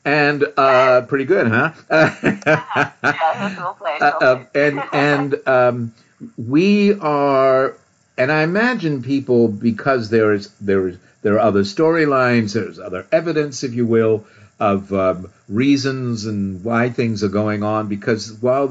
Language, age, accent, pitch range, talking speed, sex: English, 50-69, American, 105-140 Hz, 135 wpm, male